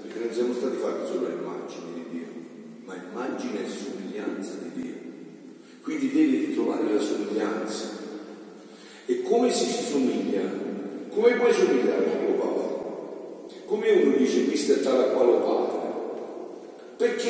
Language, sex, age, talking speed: Italian, male, 50-69, 140 wpm